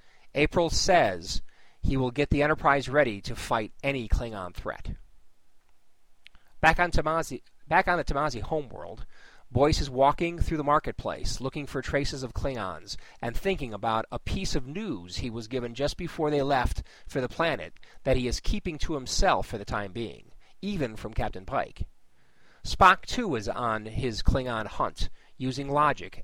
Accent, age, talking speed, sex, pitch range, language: American, 40-59, 160 wpm, male, 110-145 Hz, English